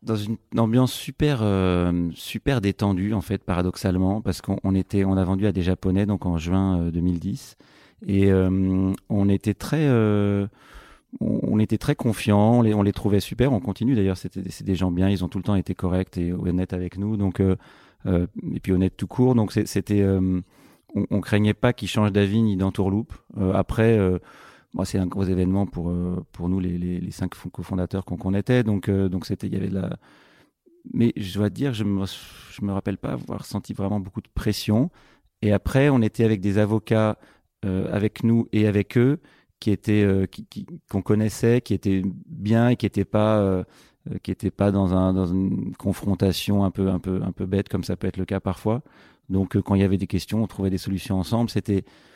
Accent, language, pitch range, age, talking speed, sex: French, French, 95-110 Hz, 30-49, 225 wpm, male